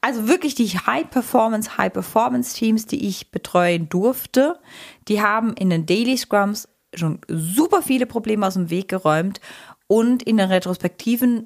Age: 30-49